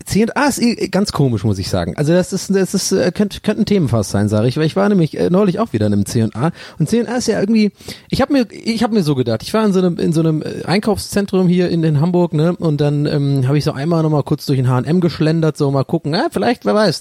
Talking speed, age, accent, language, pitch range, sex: 270 wpm, 30-49, German, German, 135-175 Hz, male